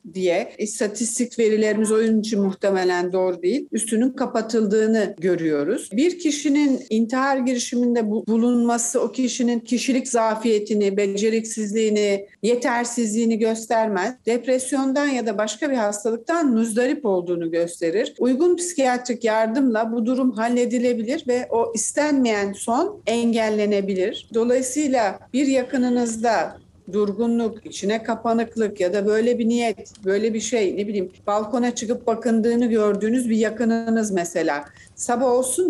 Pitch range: 210-245 Hz